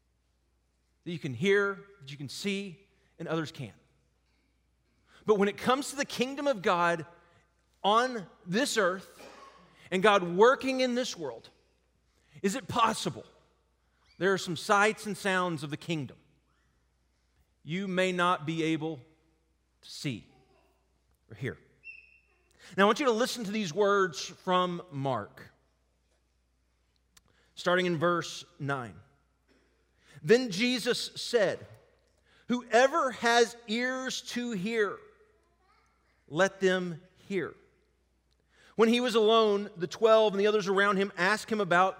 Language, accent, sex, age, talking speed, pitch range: English, American, male, 40-59, 130 wpm, 140-215 Hz